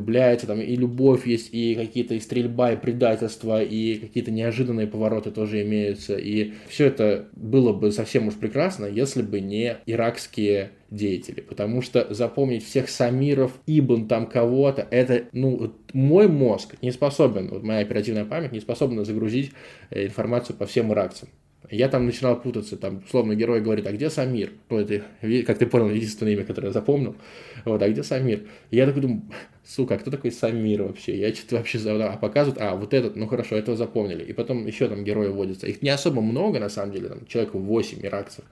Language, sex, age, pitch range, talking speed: Russian, male, 20-39, 105-125 Hz, 180 wpm